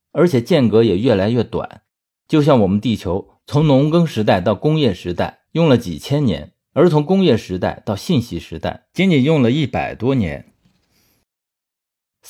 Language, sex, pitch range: Chinese, male, 95-135 Hz